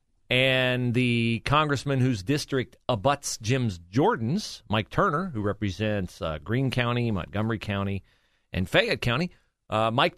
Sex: male